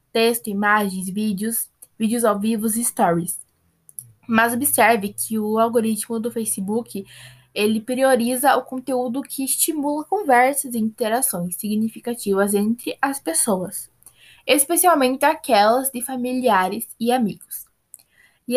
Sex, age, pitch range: female, 10-29, 200-245 Hz